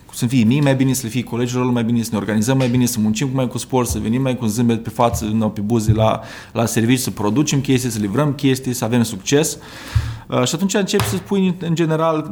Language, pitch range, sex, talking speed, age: Romanian, 110-140 Hz, male, 250 wpm, 30-49